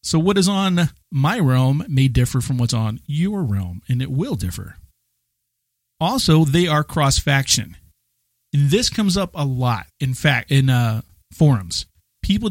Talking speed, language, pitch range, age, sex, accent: 160 wpm, English, 120-160 Hz, 40-59, male, American